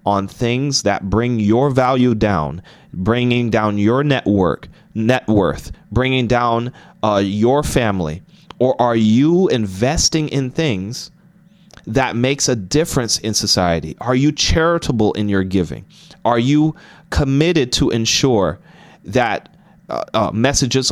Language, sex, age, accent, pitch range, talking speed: English, male, 30-49, American, 105-170 Hz, 130 wpm